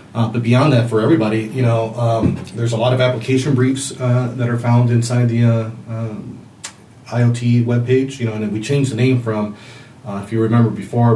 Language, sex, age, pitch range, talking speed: English, male, 30-49, 105-125 Hz, 210 wpm